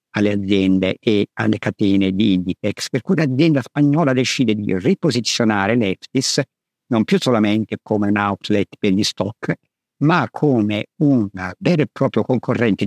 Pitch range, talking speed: 105-135 Hz, 145 wpm